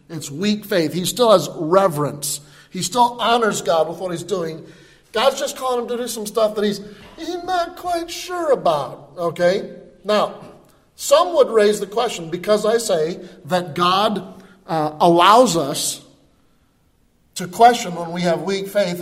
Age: 40-59